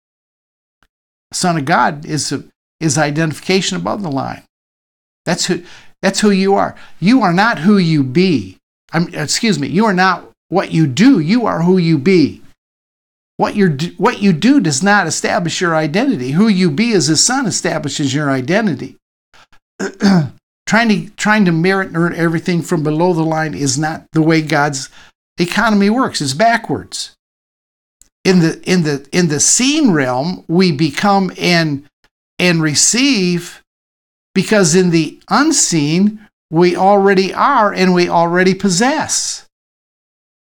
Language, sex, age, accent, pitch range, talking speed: English, male, 60-79, American, 155-200 Hz, 140 wpm